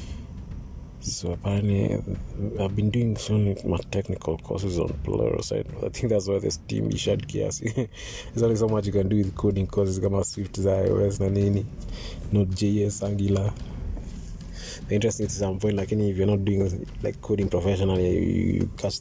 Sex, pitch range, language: male, 90-110 Hz, Swahili